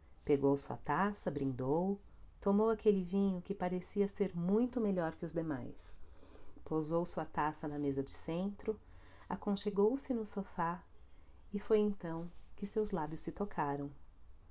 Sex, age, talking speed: female, 40-59, 135 wpm